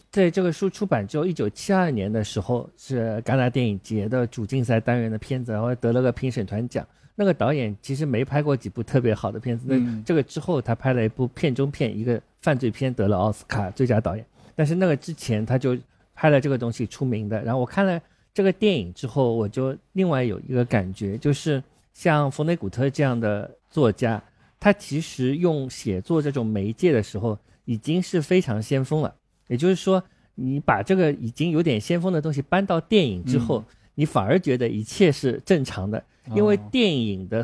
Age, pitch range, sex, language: 50-69, 110-155 Hz, male, Chinese